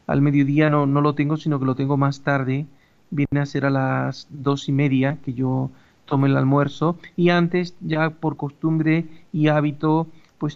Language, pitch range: Spanish, 140-155 Hz